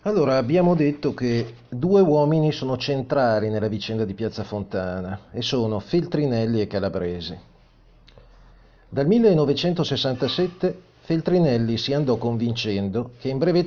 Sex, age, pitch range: male, 40-59, 120-160 Hz